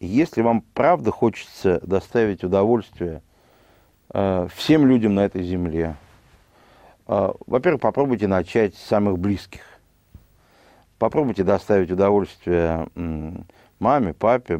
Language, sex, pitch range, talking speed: Russian, male, 85-105 Hz, 90 wpm